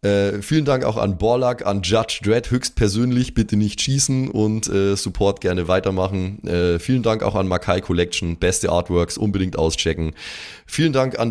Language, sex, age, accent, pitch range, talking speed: German, male, 20-39, German, 95-125 Hz, 170 wpm